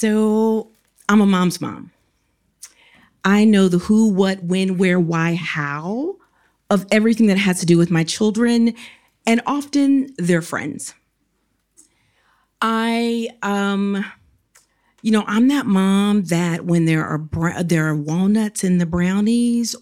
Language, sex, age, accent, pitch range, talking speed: English, female, 40-59, American, 170-230 Hz, 130 wpm